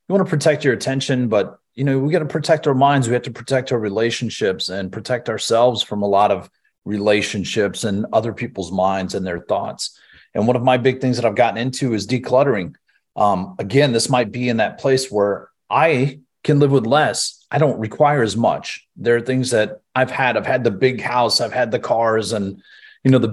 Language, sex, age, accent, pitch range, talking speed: English, male, 30-49, American, 110-145 Hz, 220 wpm